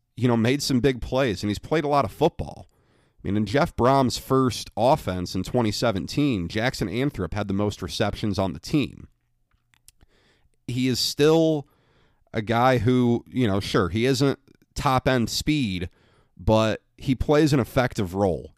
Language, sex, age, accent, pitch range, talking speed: English, male, 40-59, American, 105-135 Hz, 165 wpm